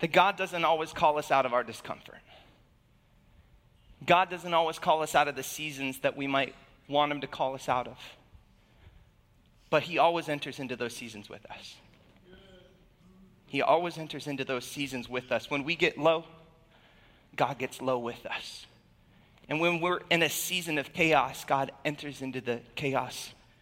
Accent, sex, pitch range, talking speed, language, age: American, male, 135-175 Hz, 175 wpm, English, 30-49